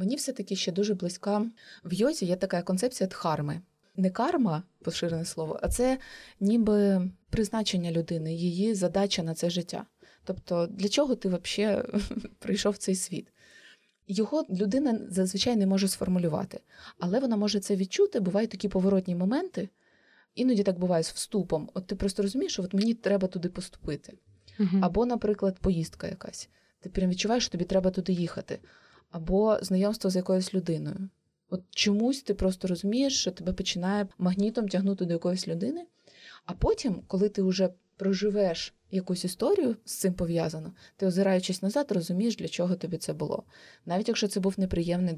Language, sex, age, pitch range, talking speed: Ukrainian, female, 20-39, 180-210 Hz, 155 wpm